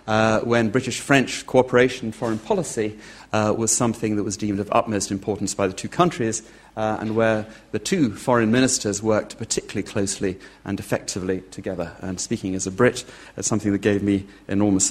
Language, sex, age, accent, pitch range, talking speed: English, male, 40-59, British, 100-115 Hz, 175 wpm